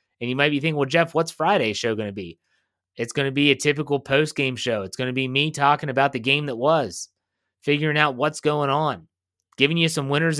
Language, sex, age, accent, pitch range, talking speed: English, male, 30-49, American, 125-170 Hz, 235 wpm